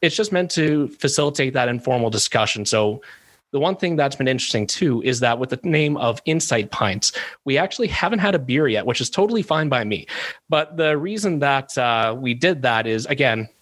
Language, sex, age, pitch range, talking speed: English, male, 30-49, 115-145 Hz, 205 wpm